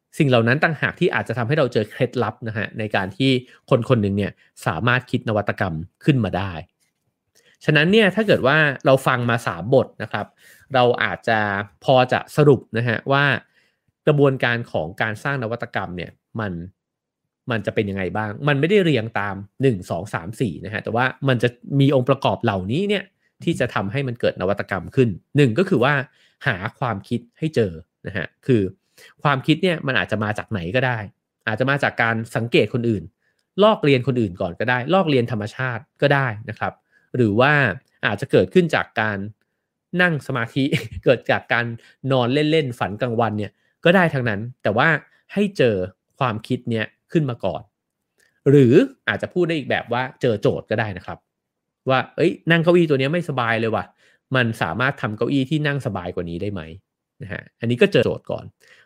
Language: English